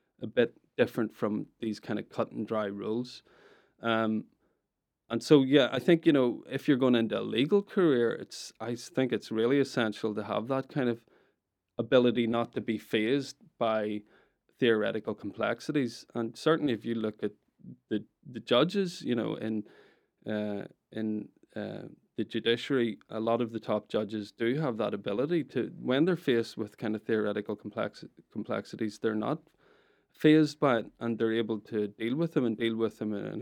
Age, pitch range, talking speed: 20-39, 110-130 Hz, 180 wpm